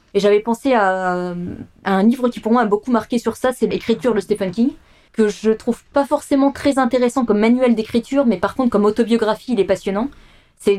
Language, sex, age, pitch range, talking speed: French, female, 20-39, 200-235 Hz, 215 wpm